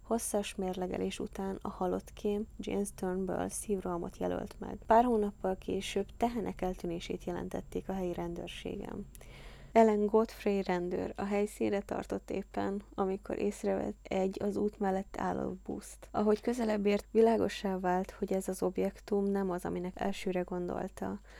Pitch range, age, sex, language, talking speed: 175-205 Hz, 10-29, female, Hungarian, 135 wpm